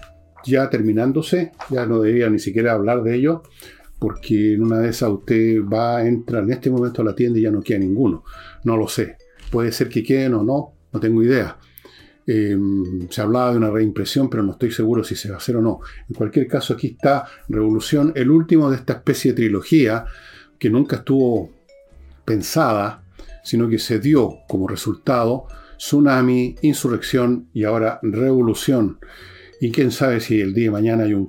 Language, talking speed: Spanish, 185 wpm